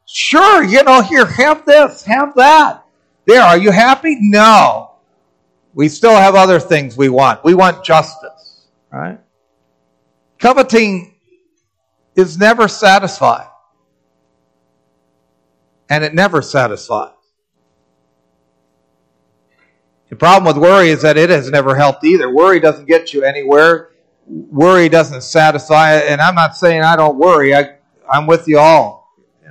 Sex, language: male, English